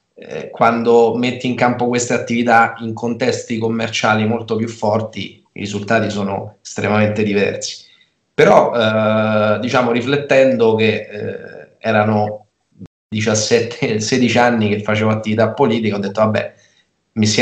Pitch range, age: 105-120 Hz, 20-39